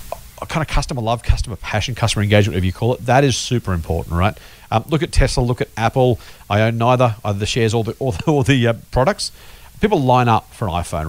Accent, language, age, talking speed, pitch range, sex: Australian, English, 40-59, 225 wpm, 105-140 Hz, male